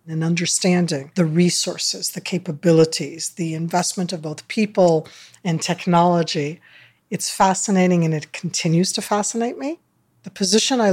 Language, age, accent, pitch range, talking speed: English, 50-69, American, 170-215 Hz, 130 wpm